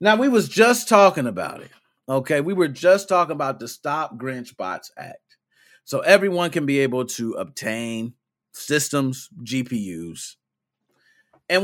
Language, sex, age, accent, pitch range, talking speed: English, male, 40-59, American, 115-170 Hz, 145 wpm